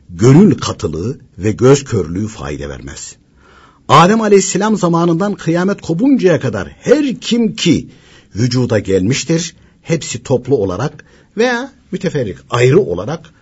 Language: Turkish